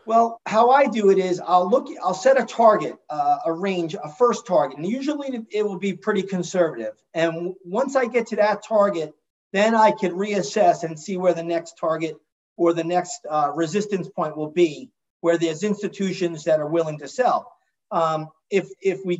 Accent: American